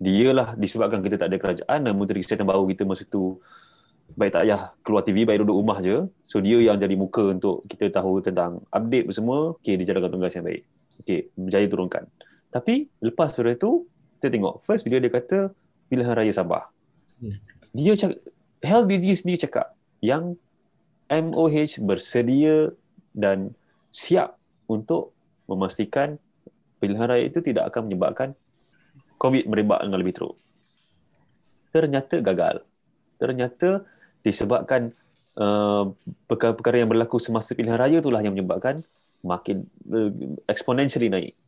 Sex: male